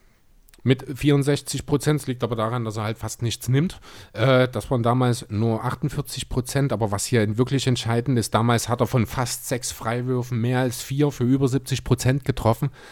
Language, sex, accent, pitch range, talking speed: German, male, German, 125-150 Hz, 185 wpm